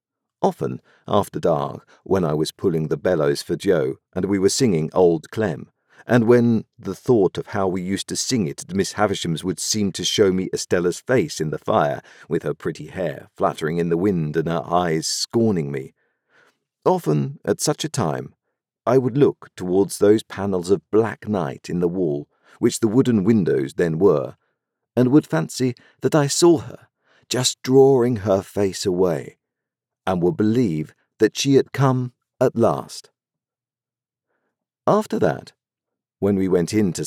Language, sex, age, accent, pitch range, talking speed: English, male, 50-69, British, 90-125 Hz, 170 wpm